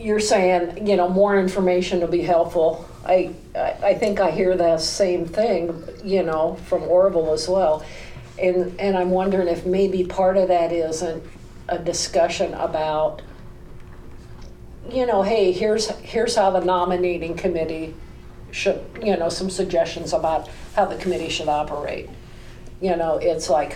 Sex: female